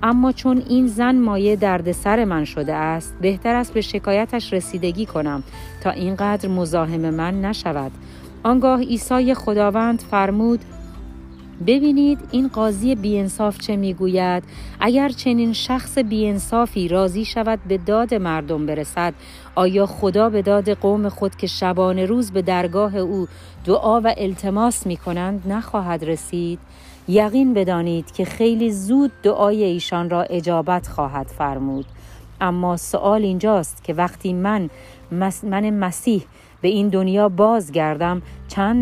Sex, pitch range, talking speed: female, 160-215 Hz, 130 wpm